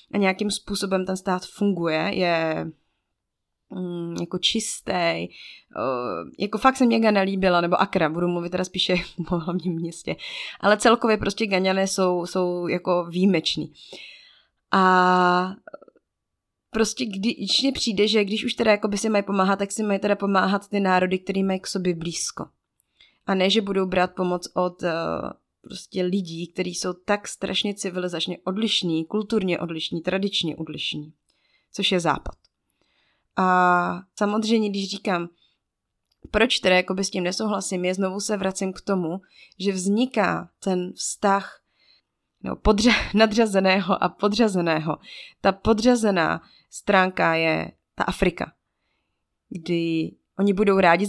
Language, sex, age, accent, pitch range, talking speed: Czech, female, 20-39, native, 180-205 Hz, 135 wpm